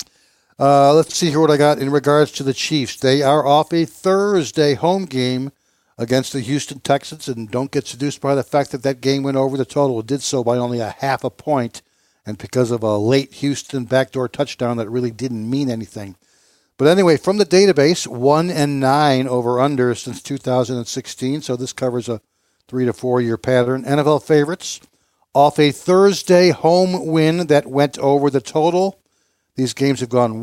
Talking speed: 185 wpm